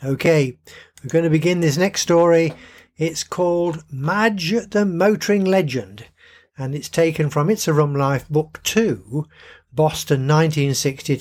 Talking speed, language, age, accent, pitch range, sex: 140 wpm, English, 50-69, British, 130-175 Hz, male